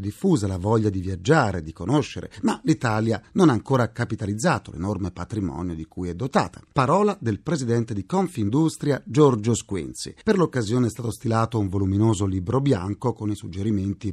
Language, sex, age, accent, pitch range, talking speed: Italian, male, 40-59, native, 105-160 Hz, 160 wpm